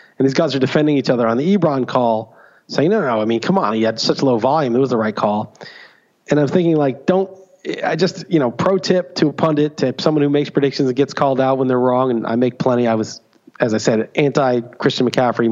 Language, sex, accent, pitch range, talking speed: English, male, American, 125-160 Hz, 260 wpm